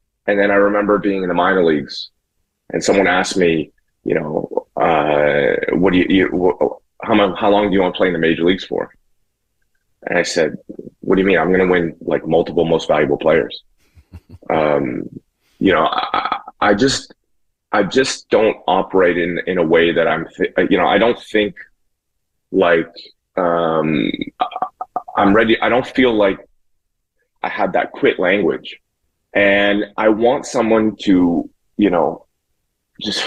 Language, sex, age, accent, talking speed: English, male, 30-49, American, 165 wpm